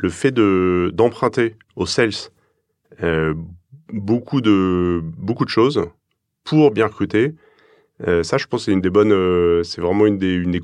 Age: 30-49